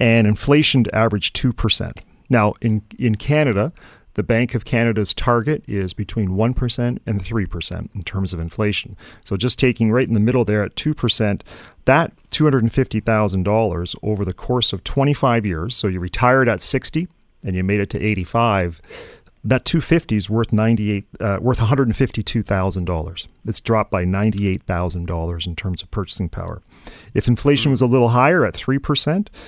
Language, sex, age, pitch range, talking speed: English, male, 40-59, 100-125 Hz, 155 wpm